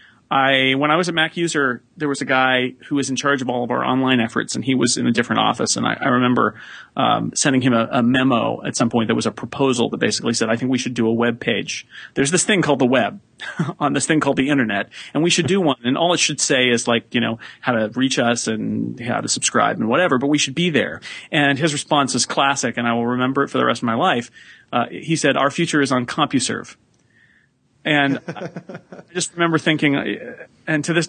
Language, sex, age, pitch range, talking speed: English, male, 30-49, 125-150 Hz, 250 wpm